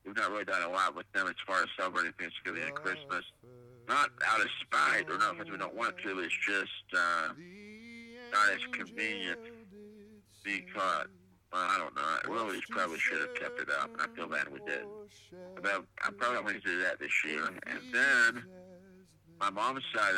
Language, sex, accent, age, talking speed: English, male, American, 50-69, 210 wpm